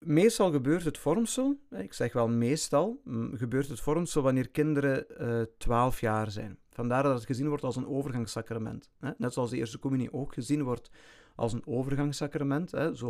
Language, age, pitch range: Dutch, 40-59, 120-150 Hz